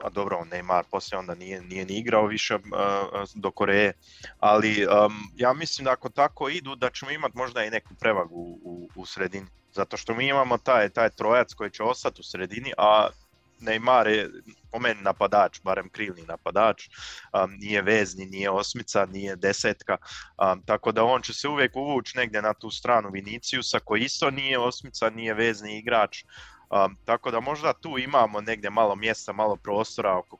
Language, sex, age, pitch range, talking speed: Croatian, male, 20-39, 95-115 Hz, 180 wpm